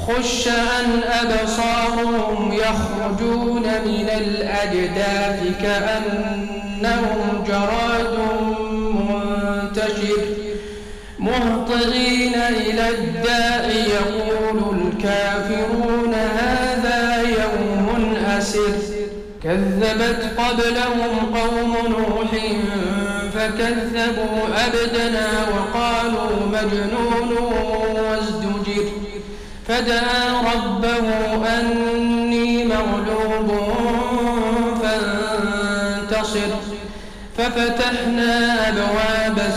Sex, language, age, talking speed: male, Arabic, 50-69, 50 wpm